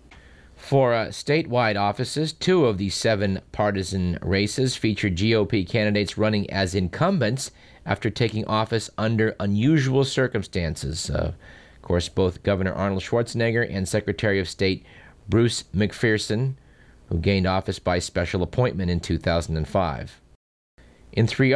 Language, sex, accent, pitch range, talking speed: English, male, American, 95-120 Hz, 125 wpm